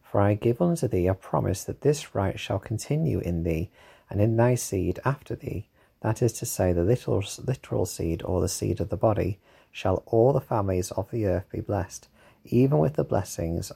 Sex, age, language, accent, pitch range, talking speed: male, 30-49, English, British, 95-115 Hz, 205 wpm